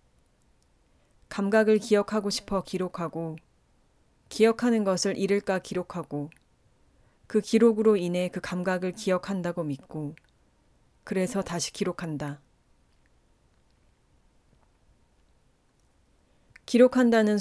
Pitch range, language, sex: 160-210 Hz, Korean, female